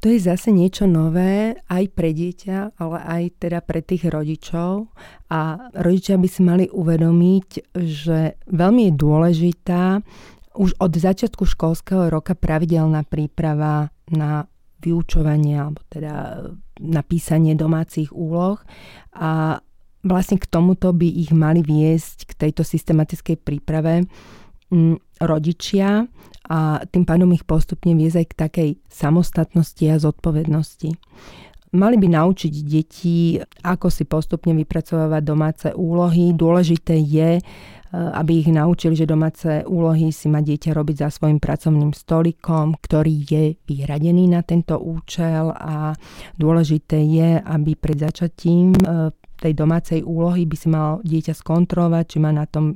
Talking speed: 125 wpm